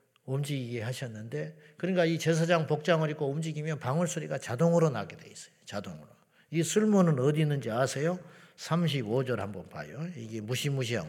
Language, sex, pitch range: Korean, male, 125-160 Hz